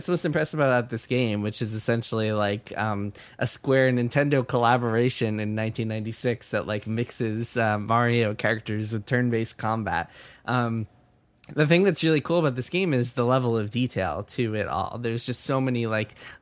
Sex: male